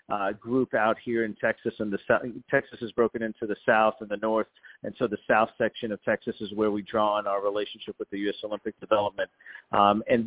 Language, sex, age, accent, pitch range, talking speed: English, male, 50-69, American, 110-125 Hz, 230 wpm